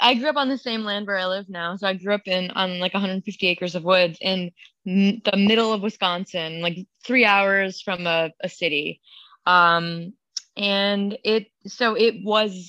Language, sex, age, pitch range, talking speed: English, female, 20-39, 185-235 Hz, 195 wpm